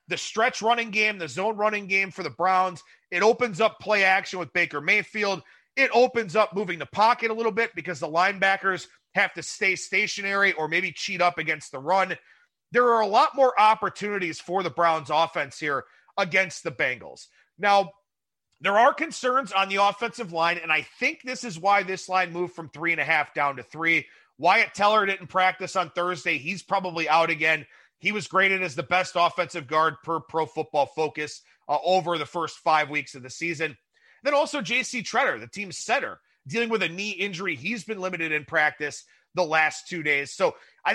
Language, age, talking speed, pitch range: English, 30-49, 195 wpm, 165-215 Hz